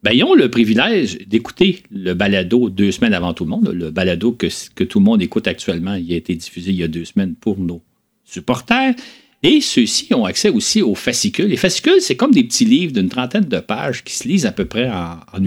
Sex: male